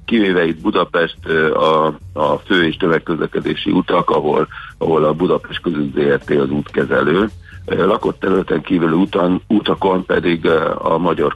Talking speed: 125 wpm